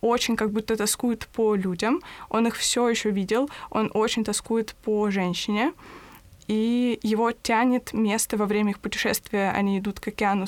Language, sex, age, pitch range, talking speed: Russian, female, 20-39, 205-230 Hz, 160 wpm